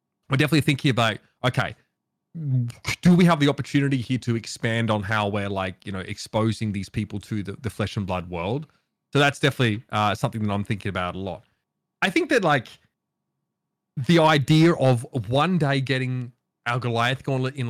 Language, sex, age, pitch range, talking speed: English, male, 30-49, 105-145 Hz, 185 wpm